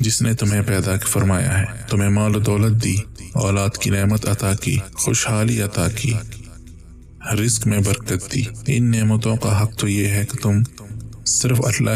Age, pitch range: 20-39, 100-115 Hz